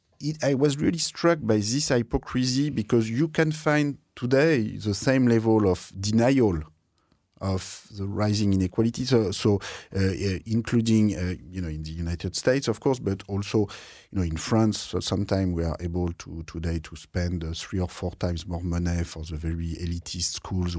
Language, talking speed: English, 175 wpm